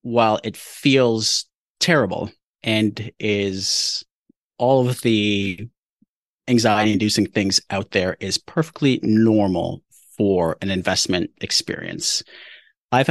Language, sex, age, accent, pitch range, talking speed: English, male, 30-49, American, 100-125 Hz, 95 wpm